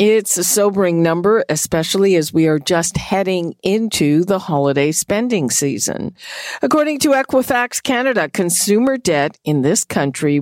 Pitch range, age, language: 165-210 Hz, 50-69, English